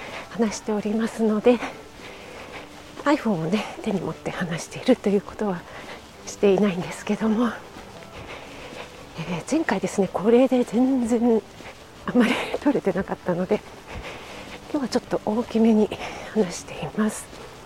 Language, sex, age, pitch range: Japanese, female, 40-59, 195-255 Hz